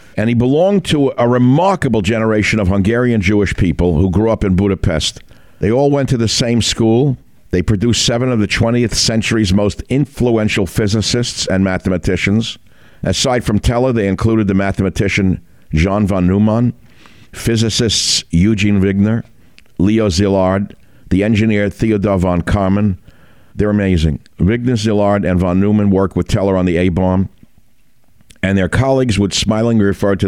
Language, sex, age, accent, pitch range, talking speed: English, male, 60-79, American, 90-115 Hz, 150 wpm